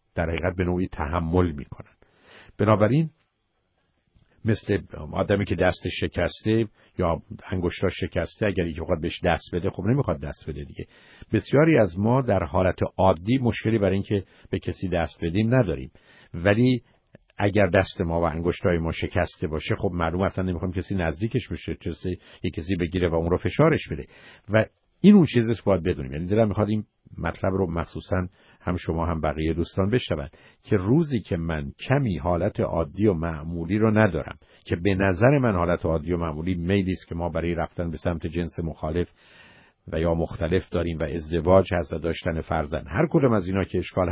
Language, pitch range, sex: Persian, 85-110 Hz, male